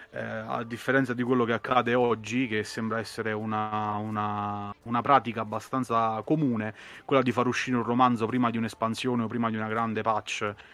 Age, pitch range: 30-49, 110-130 Hz